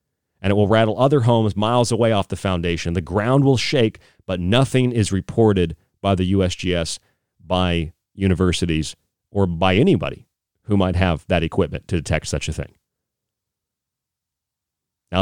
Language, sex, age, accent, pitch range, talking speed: English, male, 40-59, American, 90-115 Hz, 150 wpm